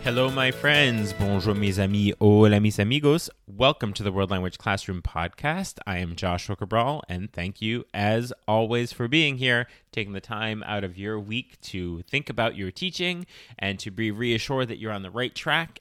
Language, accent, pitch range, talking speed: English, American, 105-135 Hz, 190 wpm